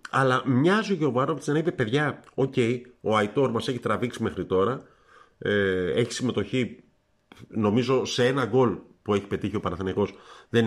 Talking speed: 165 wpm